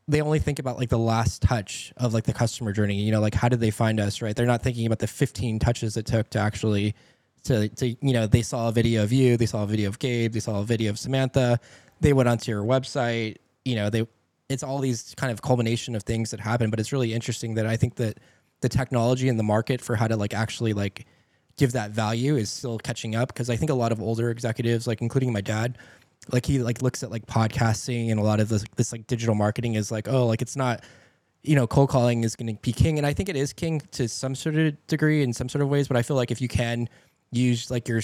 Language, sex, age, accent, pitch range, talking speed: English, male, 20-39, American, 110-130 Hz, 265 wpm